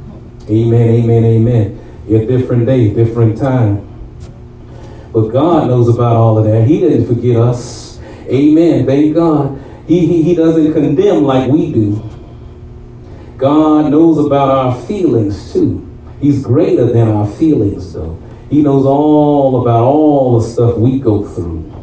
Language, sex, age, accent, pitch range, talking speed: English, male, 40-59, American, 115-145 Hz, 145 wpm